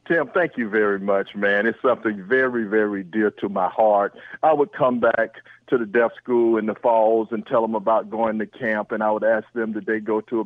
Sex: male